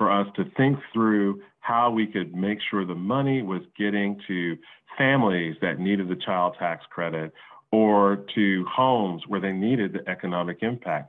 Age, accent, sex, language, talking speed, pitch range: 40-59, American, male, English, 170 wpm, 95-120 Hz